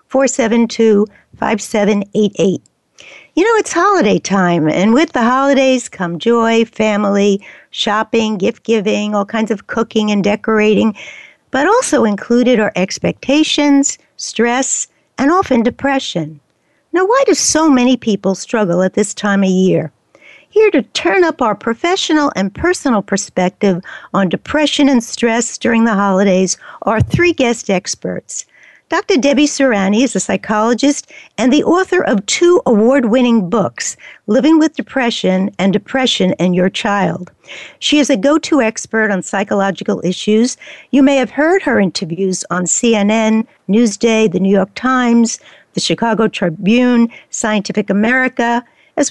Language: English